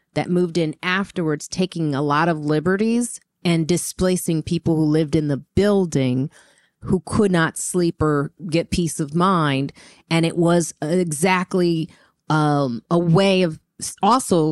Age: 30-49